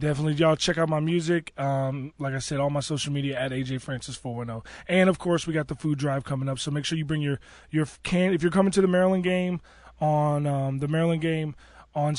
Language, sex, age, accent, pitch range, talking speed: English, male, 20-39, American, 135-160 Hz, 240 wpm